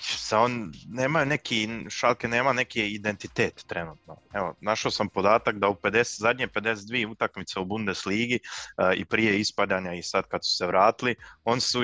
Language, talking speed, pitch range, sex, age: Croatian, 160 wpm, 95-115 Hz, male, 20-39